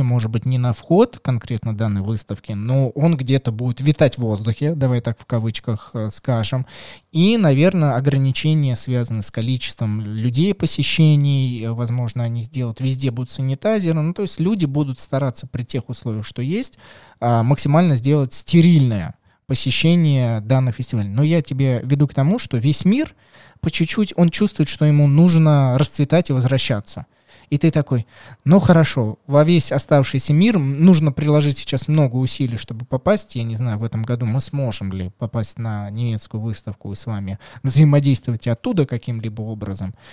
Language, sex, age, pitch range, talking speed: Russian, male, 20-39, 120-160 Hz, 160 wpm